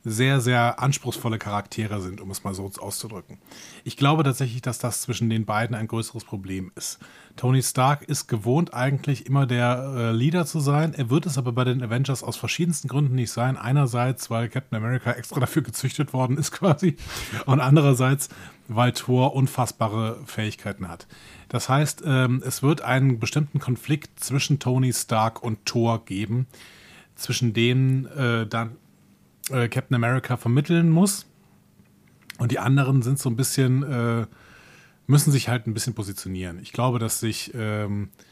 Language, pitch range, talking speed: German, 115-135 Hz, 160 wpm